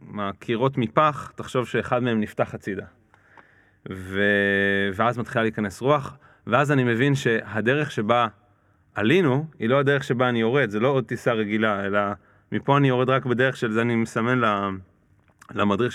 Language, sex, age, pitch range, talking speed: Hebrew, male, 30-49, 105-130 Hz, 145 wpm